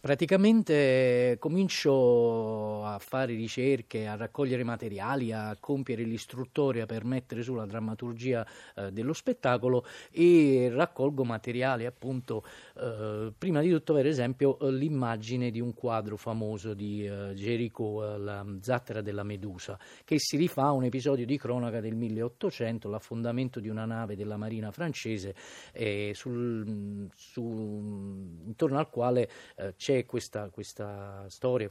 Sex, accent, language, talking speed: male, native, Italian, 130 wpm